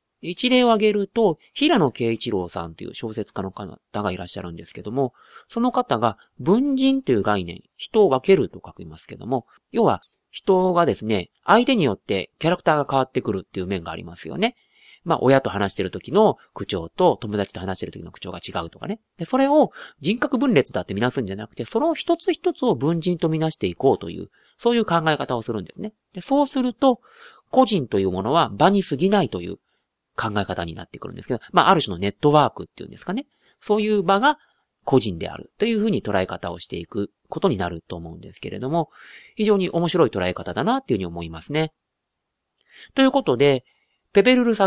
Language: Japanese